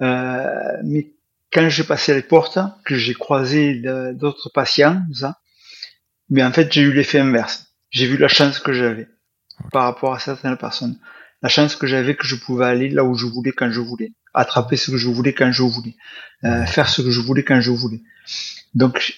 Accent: French